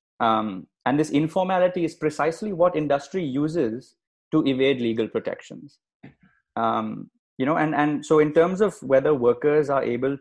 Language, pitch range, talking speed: English, 115-140 Hz, 155 wpm